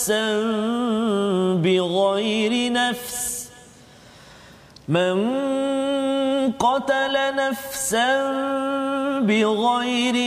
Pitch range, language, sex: 220-275 Hz, Malayalam, male